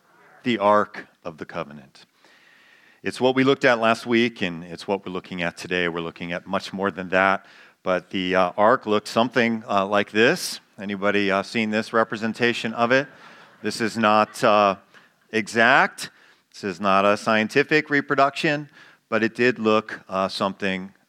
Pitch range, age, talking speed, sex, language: 95-115 Hz, 40-59, 170 wpm, male, English